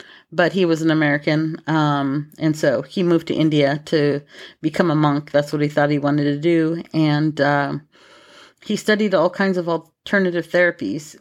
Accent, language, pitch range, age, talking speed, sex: American, English, 155-185 Hz, 40-59, 175 wpm, female